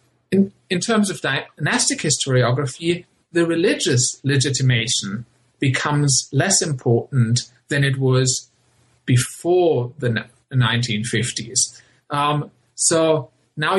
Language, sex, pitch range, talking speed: English, male, 120-155 Hz, 85 wpm